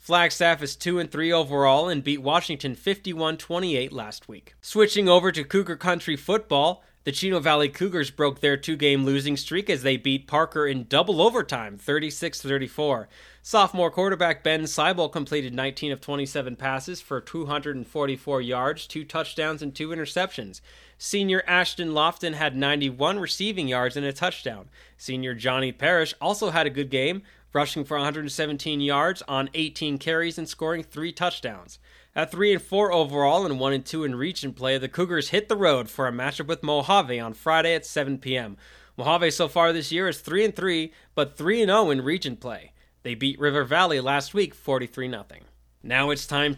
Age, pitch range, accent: 20-39, 135-170 Hz, American